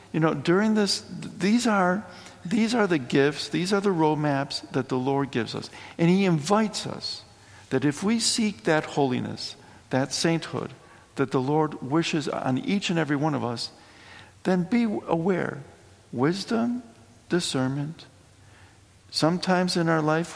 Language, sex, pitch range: English, male, 115-175 Hz